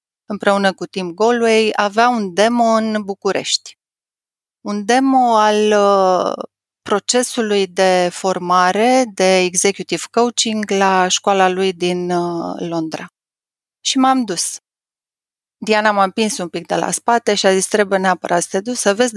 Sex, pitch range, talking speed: female, 185-215 Hz, 145 wpm